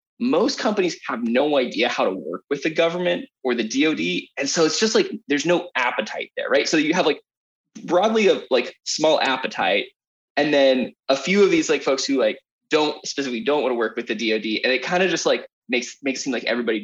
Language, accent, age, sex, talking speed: English, American, 20-39, male, 225 wpm